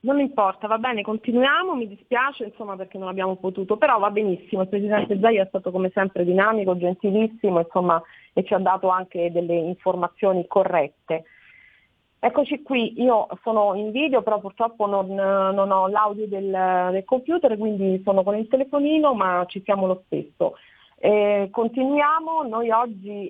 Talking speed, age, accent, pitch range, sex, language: 160 wpm, 30-49, native, 180-220 Hz, female, Italian